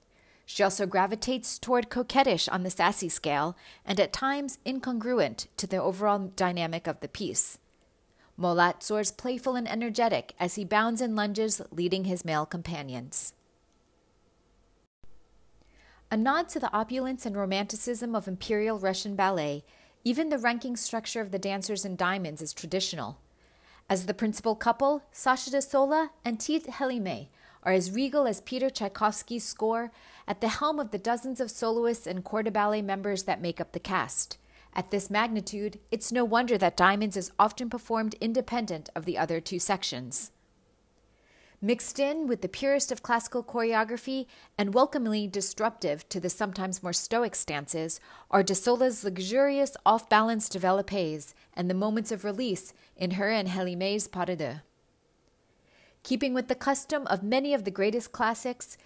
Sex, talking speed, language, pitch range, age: female, 155 wpm, English, 185-245 Hz, 30-49